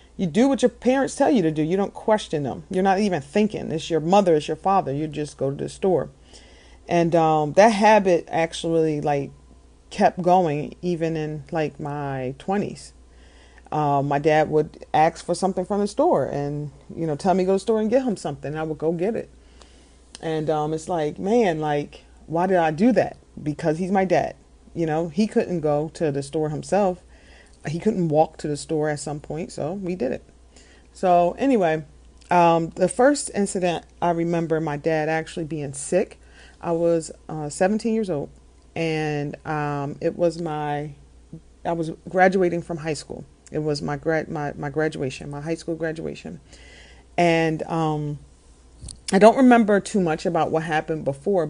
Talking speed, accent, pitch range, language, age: 185 wpm, American, 145-180 Hz, English, 40-59